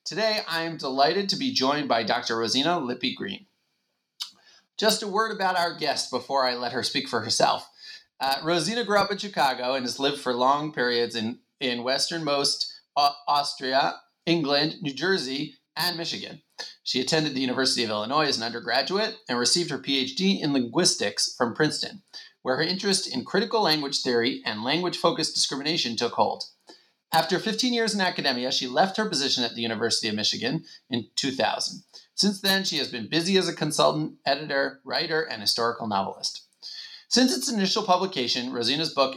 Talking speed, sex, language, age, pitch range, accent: 170 wpm, male, English, 30-49, 125-175 Hz, American